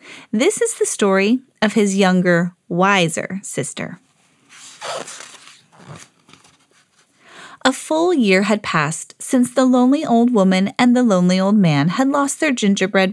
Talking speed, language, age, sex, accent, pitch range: 130 wpm, English, 30-49, female, American, 180-265 Hz